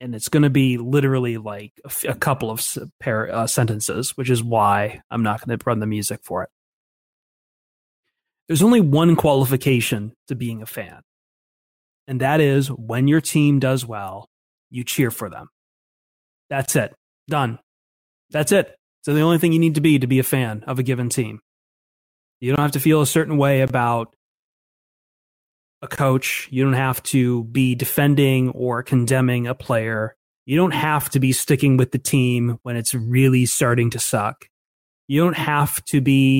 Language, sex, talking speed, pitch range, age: English, male, 175 wpm, 115-145 Hz, 30-49